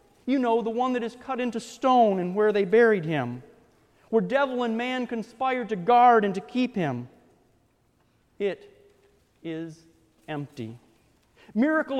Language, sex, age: English, male, 40-59